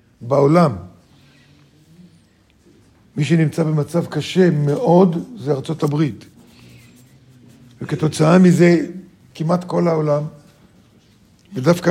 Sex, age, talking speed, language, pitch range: male, 50-69, 75 wpm, Hebrew, 140-190 Hz